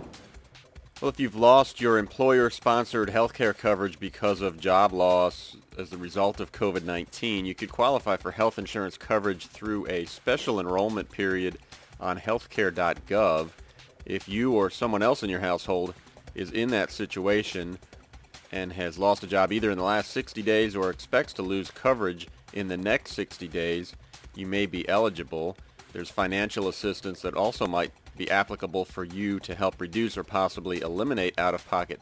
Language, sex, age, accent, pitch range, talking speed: English, male, 40-59, American, 90-110 Hz, 165 wpm